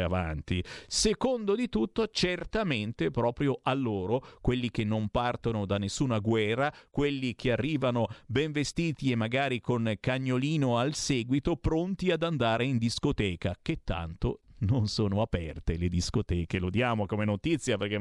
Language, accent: Italian, native